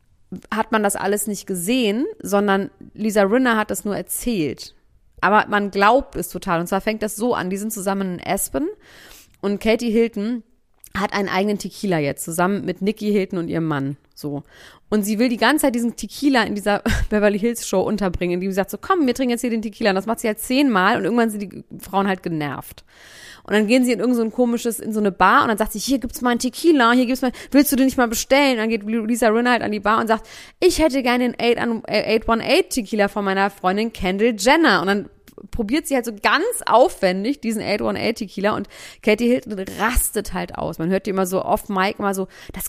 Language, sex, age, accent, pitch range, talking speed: German, female, 30-49, German, 195-240 Hz, 225 wpm